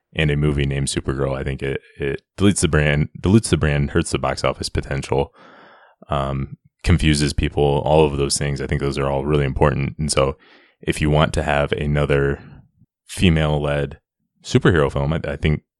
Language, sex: English, male